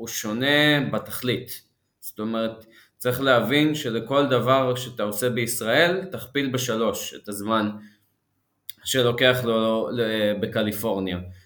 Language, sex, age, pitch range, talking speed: Hebrew, male, 20-39, 110-145 Hz, 95 wpm